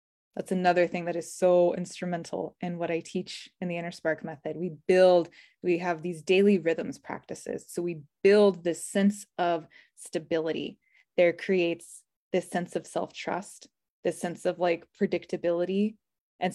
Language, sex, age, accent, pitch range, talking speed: English, female, 20-39, American, 170-195 Hz, 155 wpm